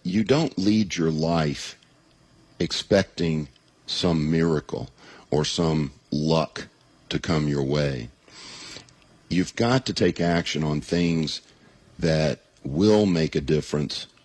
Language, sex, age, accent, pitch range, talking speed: English, male, 50-69, American, 75-90 Hz, 115 wpm